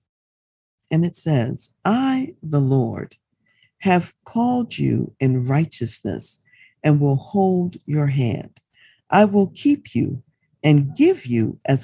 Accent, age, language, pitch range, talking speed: American, 50-69, English, 125-180 Hz, 120 wpm